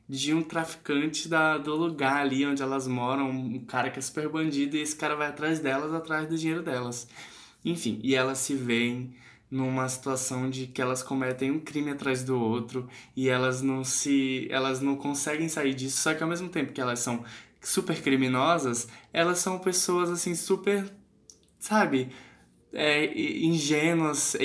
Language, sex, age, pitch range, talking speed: Portuguese, male, 10-29, 125-155 Hz, 165 wpm